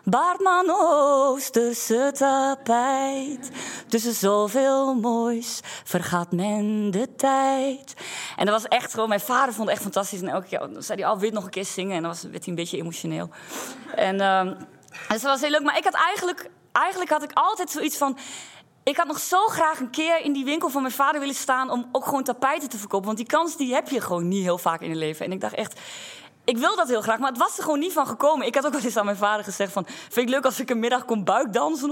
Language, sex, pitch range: Dutch, female, 205-285 Hz